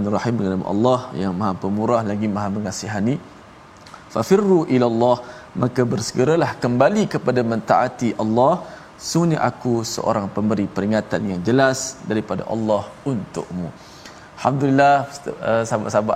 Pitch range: 105-140 Hz